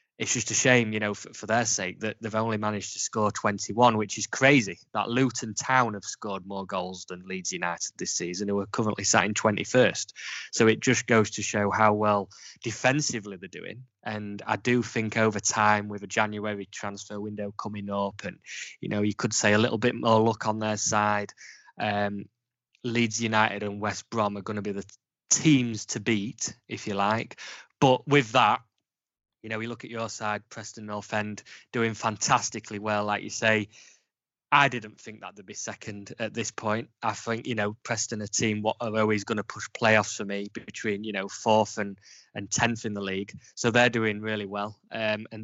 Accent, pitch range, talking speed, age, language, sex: British, 105-115 Hz, 205 wpm, 20-39, English, male